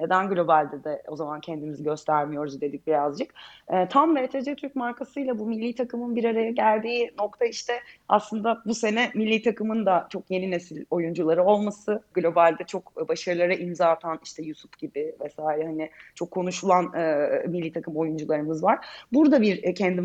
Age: 30-49